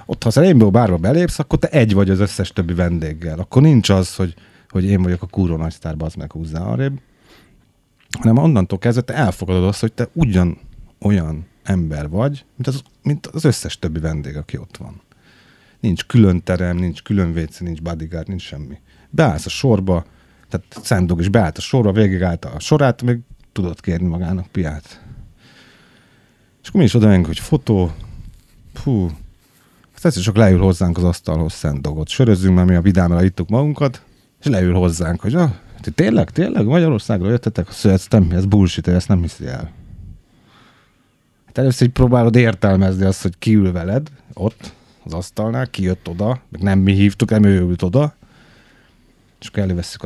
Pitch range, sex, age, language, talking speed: 90-115 Hz, male, 30-49, Hungarian, 170 wpm